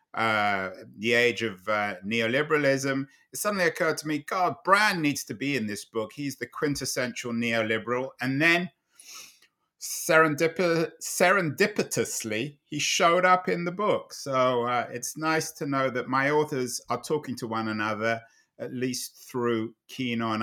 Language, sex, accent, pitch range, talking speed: English, male, British, 120-155 Hz, 150 wpm